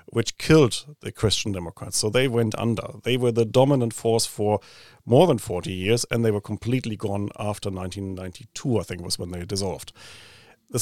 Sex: male